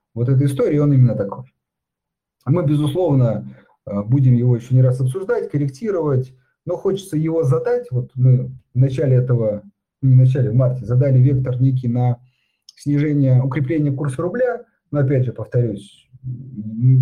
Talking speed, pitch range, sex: 145 wpm, 125-150 Hz, male